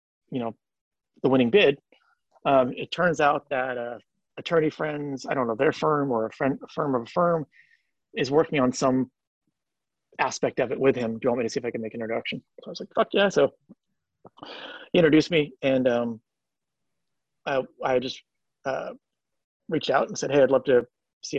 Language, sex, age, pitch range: English, male, 30-49, 125-150 Hz